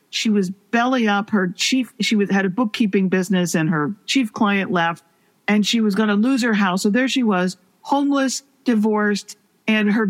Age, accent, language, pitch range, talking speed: 50-69, American, English, 200-245 Hz, 190 wpm